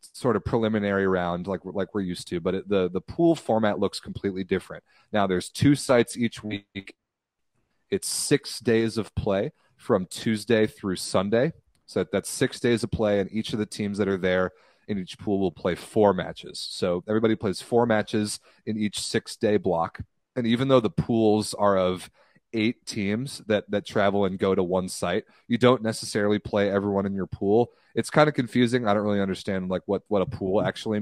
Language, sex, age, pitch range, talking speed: English, male, 30-49, 95-115 Hz, 200 wpm